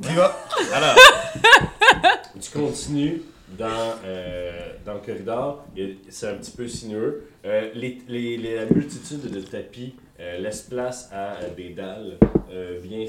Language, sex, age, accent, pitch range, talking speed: French, male, 30-49, Canadian, 85-120 Hz, 140 wpm